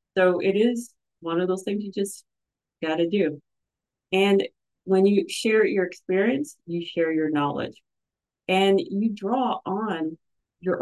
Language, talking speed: English, 150 wpm